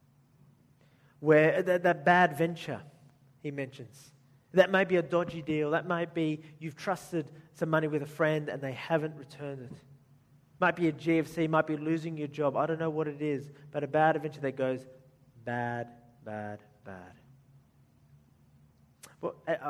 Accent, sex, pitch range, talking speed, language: Australian, male, 135-170 Hz, 160 wpm, English